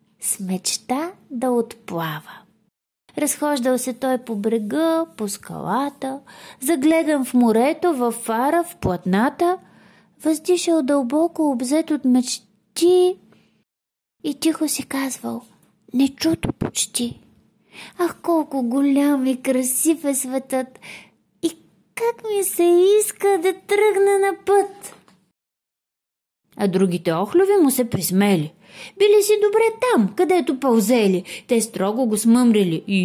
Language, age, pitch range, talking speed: Bulgarian, 30-49, 235-345 Hz, 115 wpm